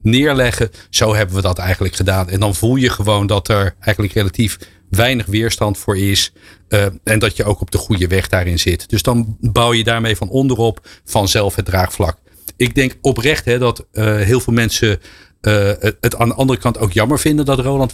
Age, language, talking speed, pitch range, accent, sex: 50-69, Dutch, 205 wpm, 100-130 Hz, Dutch, male